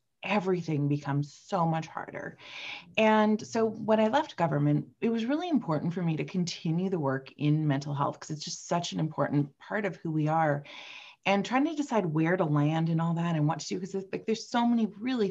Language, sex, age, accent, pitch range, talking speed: English, female, 30-49, American, 145-195 Hz, 215 wpm